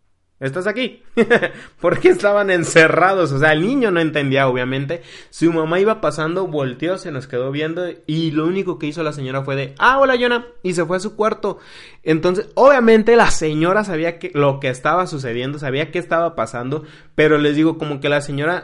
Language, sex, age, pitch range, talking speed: Spanish, male, 20-39, 120-160 Hz, 195 wpm